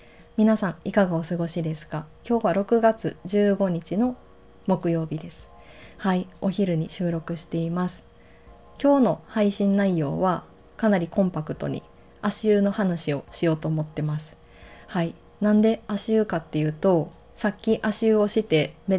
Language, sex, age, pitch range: Japanese, female, 20-39, 165-210 Hz